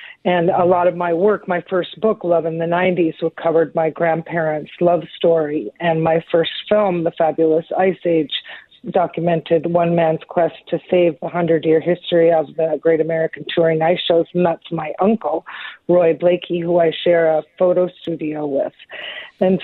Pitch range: 165-180 Hz